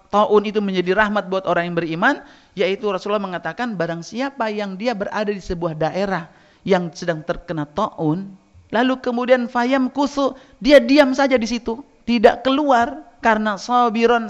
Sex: male